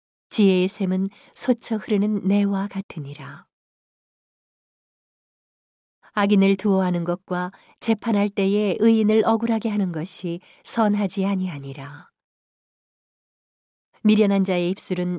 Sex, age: female, 40-59